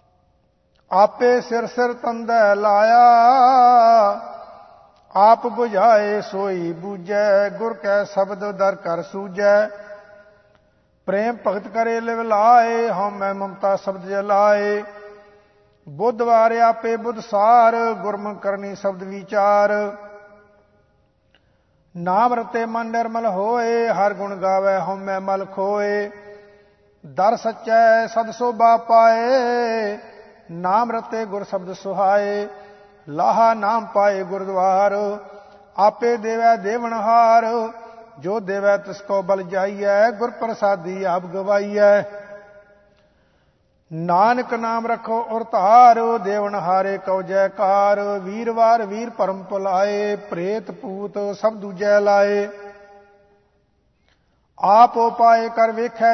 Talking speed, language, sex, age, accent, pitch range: 90 wpm, English, male, 50-69, Indian, 200-230 Hz